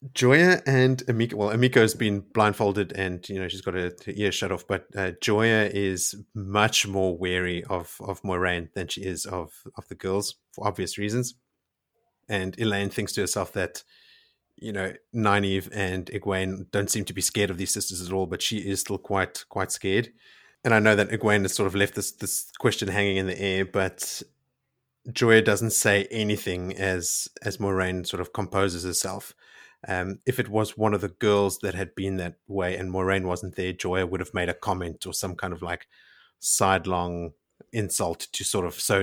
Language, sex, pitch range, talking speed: English, male, 90-105 Hz, 195 wpm